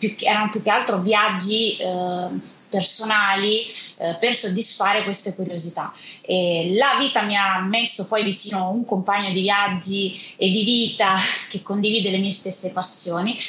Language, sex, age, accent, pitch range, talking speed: Italian, female, 20-39, native, 190-225 Hz, 140 wpm